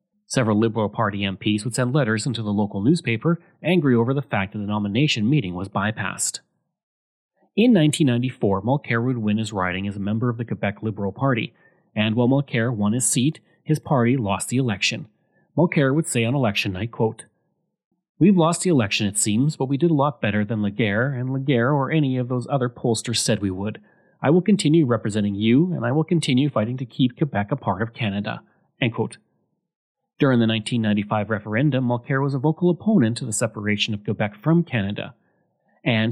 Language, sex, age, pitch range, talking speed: English, male, 30-49, 110-145 Hz, 190 wpm